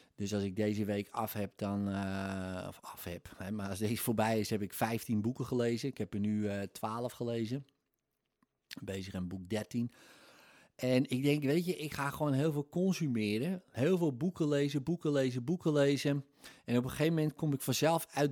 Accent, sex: Dutch, male